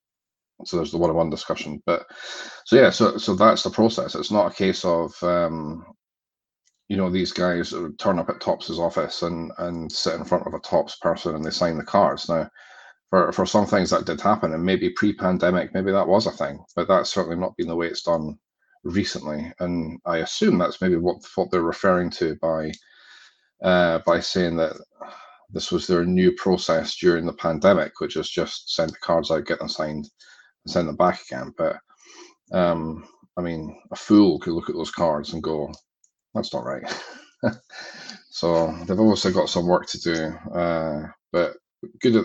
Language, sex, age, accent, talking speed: English, male, 30-49, British, 190 wpm